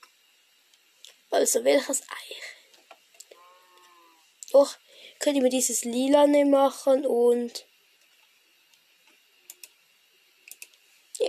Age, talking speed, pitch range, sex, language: 10-29, 70 wpm, 210-275 Hz, female, German